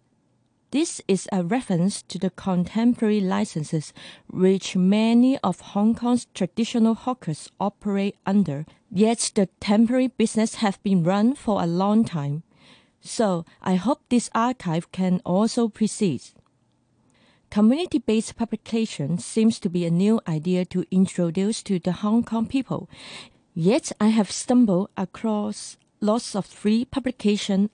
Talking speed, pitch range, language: 130 wpm, 185-225 Hz, English